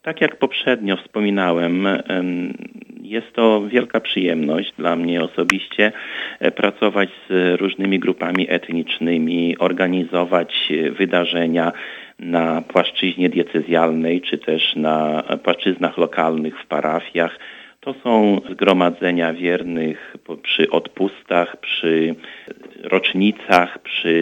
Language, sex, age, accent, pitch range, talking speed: Polish, male, 40-59, native, 85-100 Hz, 90 wpm